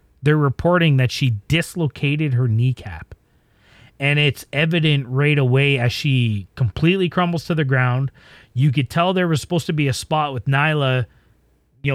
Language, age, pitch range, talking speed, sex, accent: English, 30-49, 125-155 Hz, 160 wpm, male, American